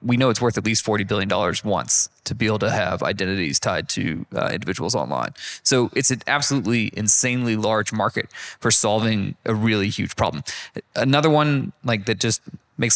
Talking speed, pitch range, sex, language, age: 180 wpm, 110-130 Hz, male, English, 20-39